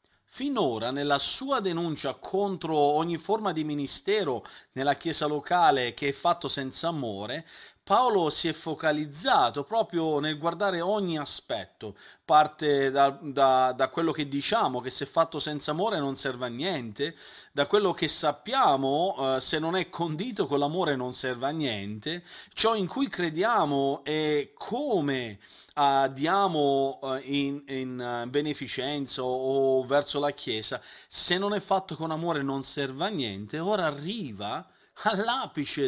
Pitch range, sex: 135-170 Hz, male